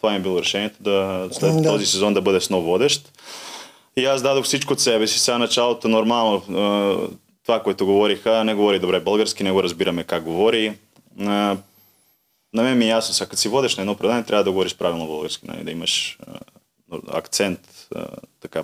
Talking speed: 170 wpm